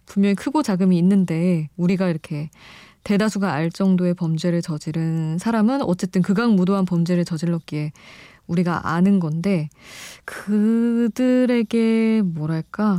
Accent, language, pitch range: native, Korean, 170-210 Hz